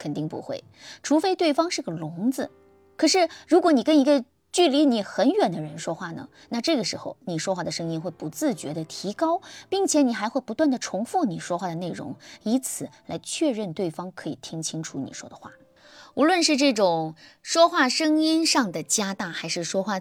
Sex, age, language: female, 20-39, Chinese